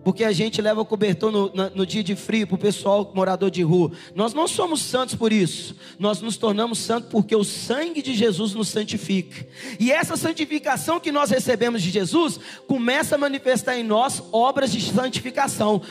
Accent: Brazilian